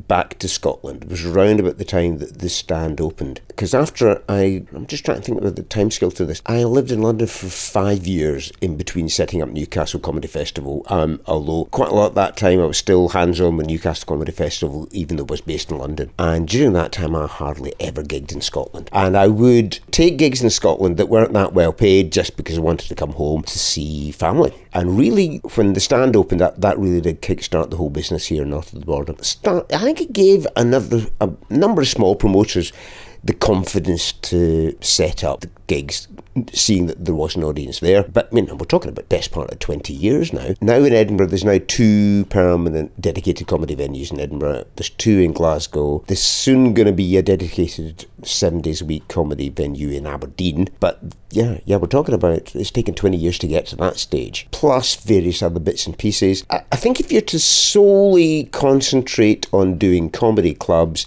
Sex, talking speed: male, 215 wpm